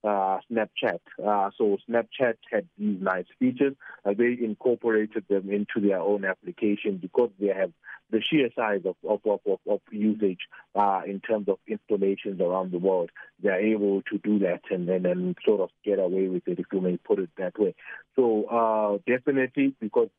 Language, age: English, 50-69